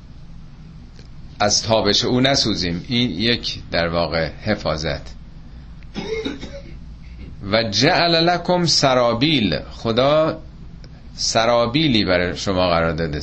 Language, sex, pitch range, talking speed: Persian, male, 100-140 Hz, 85 wpm